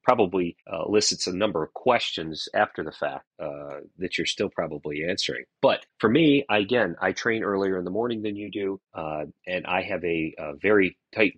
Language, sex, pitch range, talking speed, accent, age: English, male, 85-105 Hz, 195 wpm, American, 30-49